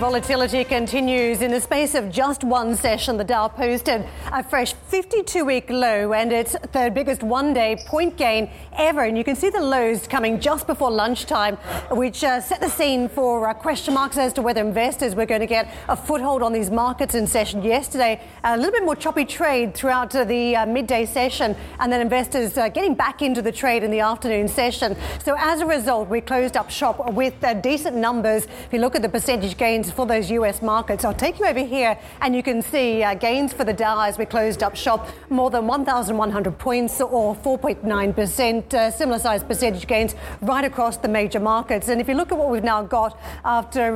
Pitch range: 225-270 Hz